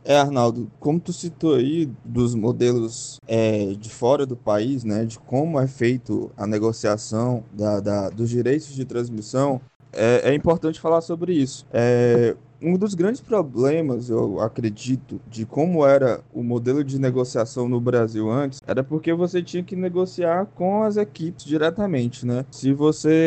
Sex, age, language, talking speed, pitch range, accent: male, 20-39, Portuguese, 160 wpm, 125-165 Hz, Brazilian